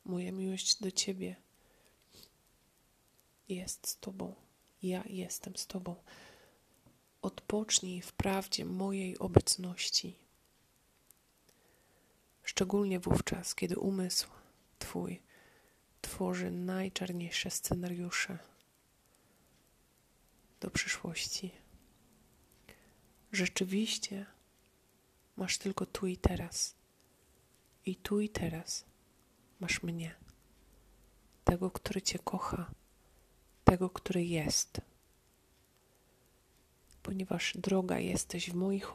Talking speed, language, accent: 75 wpm, Polish, native